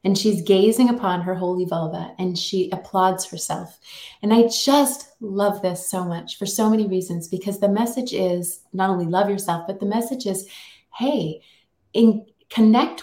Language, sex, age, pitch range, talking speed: English, female, 30-49, 185-235 Hz, 170 wpm